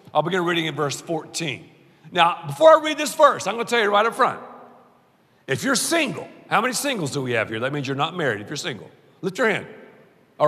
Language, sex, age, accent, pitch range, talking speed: English, male, 50-69, American, 165-250 Hz, 240 wpm